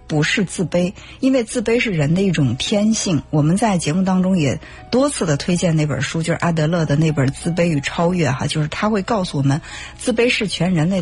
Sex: female